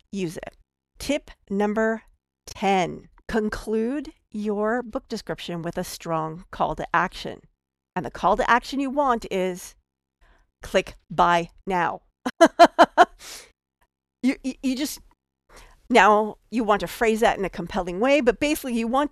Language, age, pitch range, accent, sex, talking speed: English, 50-69, 170-260 Hz, American, female, 135 wpm